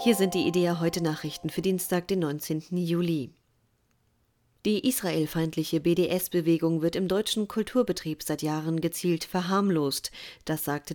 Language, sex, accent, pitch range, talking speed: German, female, German, 160-195 Hz, 130 wpm